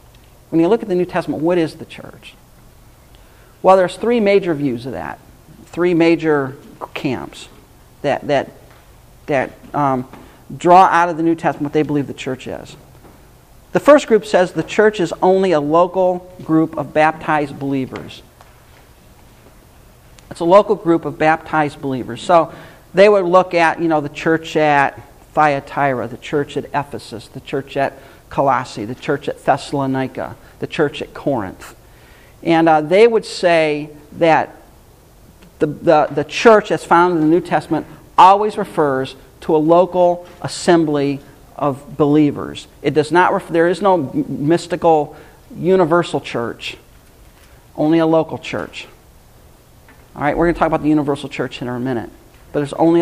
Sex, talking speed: male, 155 wpm